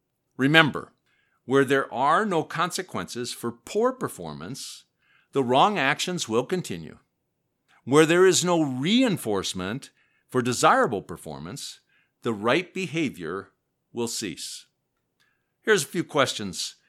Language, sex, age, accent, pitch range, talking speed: English, male, 50-69, American, 115-175 Hz, 110 wpm